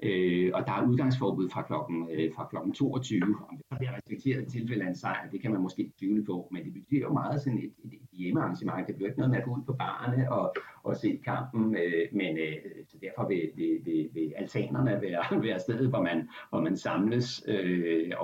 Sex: male